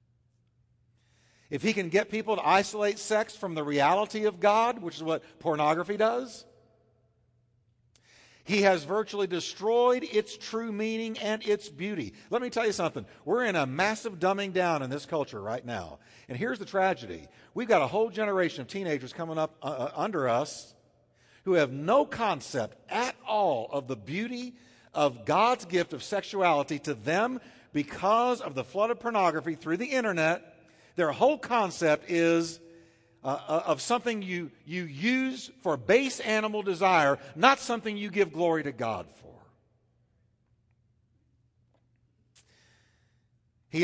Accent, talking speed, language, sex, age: American, 150 wpm, English, male, 50-69